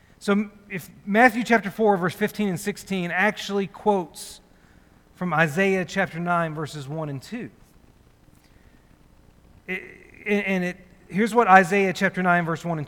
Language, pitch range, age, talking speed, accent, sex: English, 175-205 Hz, 40-59, 140 wpm, American, male